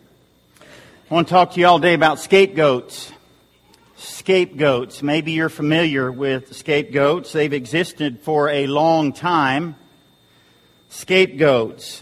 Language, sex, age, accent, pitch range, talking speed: English, male, 50-69, American, 155-205 Hz, 115 wpm